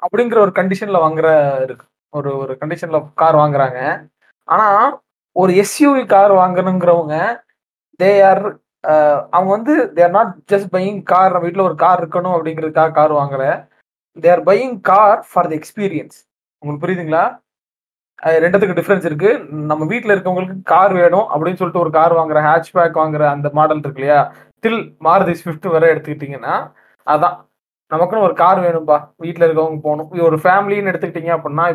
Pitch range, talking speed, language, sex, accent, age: 150-190 Hz, 150 wpm, Tamil, male, native, 20-39